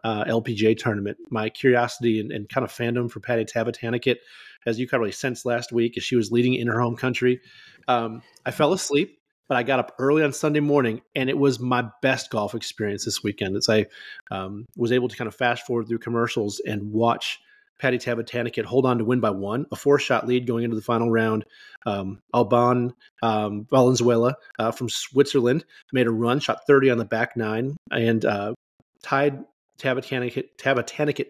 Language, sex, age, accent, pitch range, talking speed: English, male, 30-49, American, 115-135 Hz, 195 wpm